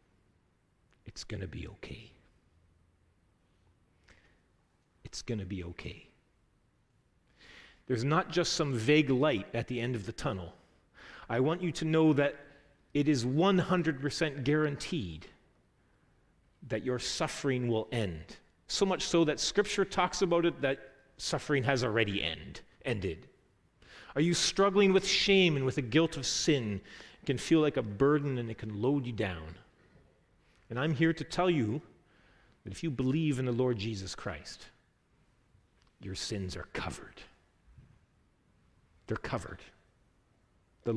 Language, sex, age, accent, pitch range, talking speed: English, male, 40-59, American, 105-150 Hz, 140 wpm